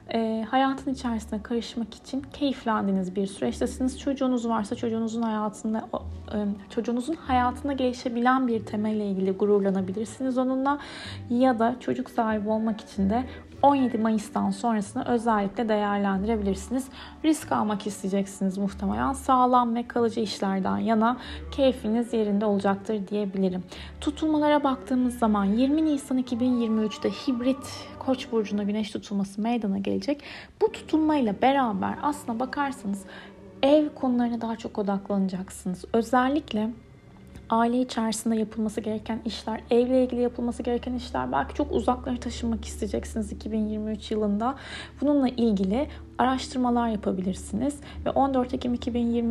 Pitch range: 205-255 Hz